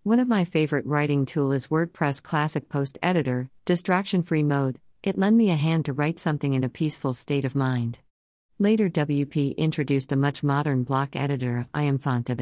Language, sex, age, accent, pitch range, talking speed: English, female, 50-69, American, 135-170 Hz, 190 wpm